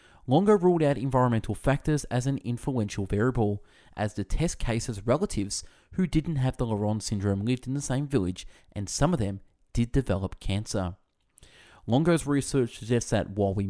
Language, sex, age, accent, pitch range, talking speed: English, male, 30-49, Australian, 100-135 Hz, 165 wpm